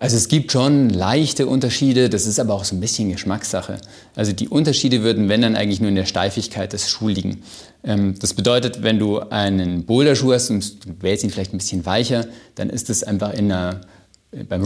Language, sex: German, male